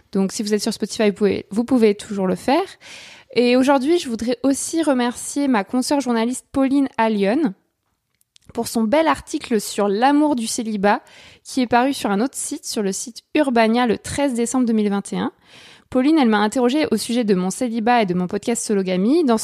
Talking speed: 190 wpm